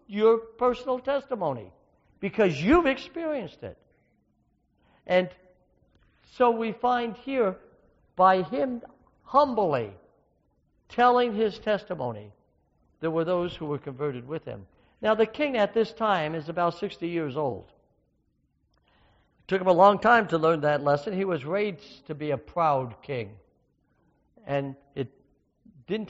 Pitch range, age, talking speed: 145-200 Hz, 60-79, 135 wpm